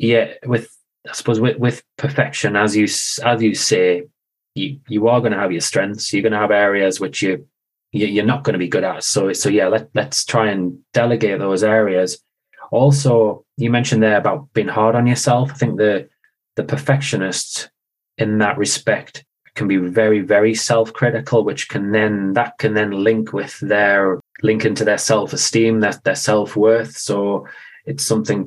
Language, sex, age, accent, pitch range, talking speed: English, male, 20-39, British, 105-120 Hz, 185 wpm